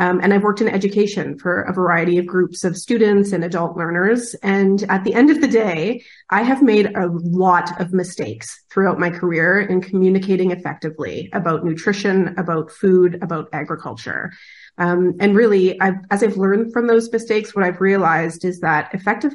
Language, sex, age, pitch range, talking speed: English, female, 30-49, 180-210 Hz, 175 wpm